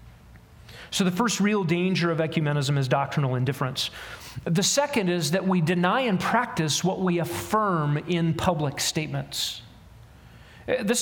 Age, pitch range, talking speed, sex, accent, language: 40-59, 155-195 Hz, 135 wpm, male, American, English